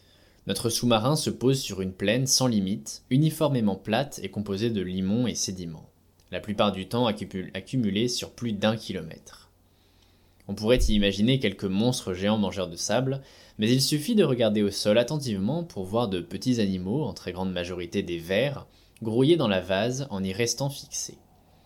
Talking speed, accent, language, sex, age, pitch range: 175 wpm, French, French, male, 20-39, 95-120 Hz